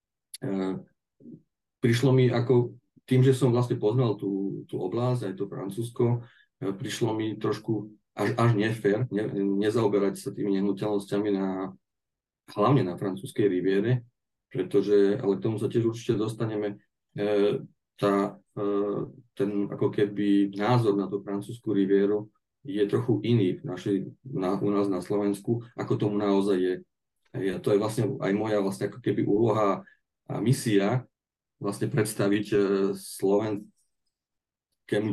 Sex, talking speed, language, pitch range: male, 135 wpm, Slovak, 100-115 Hz